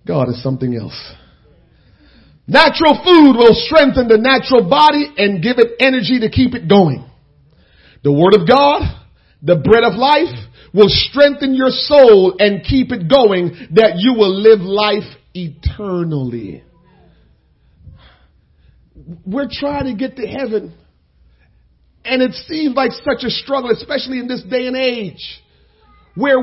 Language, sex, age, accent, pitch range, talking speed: English, male, 40-59, American, 180-275 Hz, 140 wpm